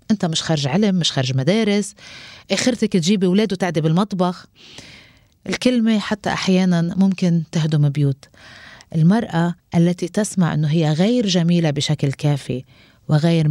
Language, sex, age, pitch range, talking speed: Arabic, female, 30-49, 160-215 Hz, 125 wpm